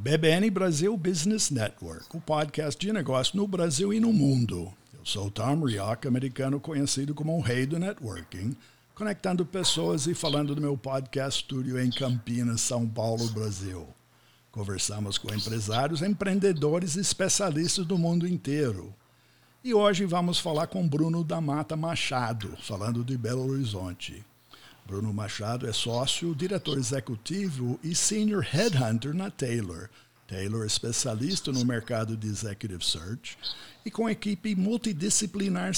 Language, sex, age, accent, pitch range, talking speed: Portuguese, male, 60-79, Brazilian, 120-180 Hz, 140 wpm